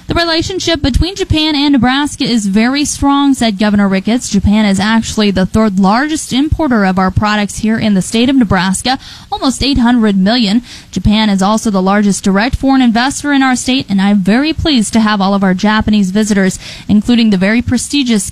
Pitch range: 210-255 Hz